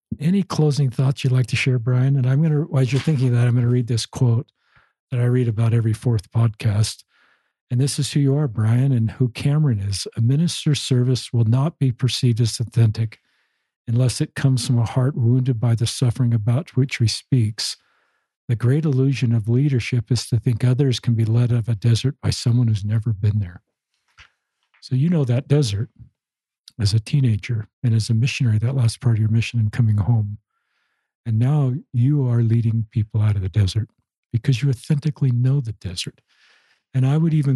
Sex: male